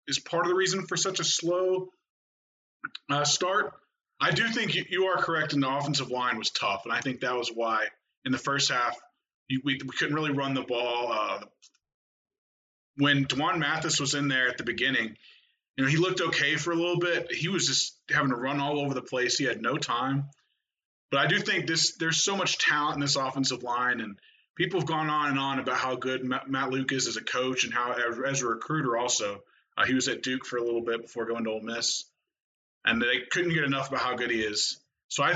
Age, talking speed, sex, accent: 20-39, 230 wpm, male, American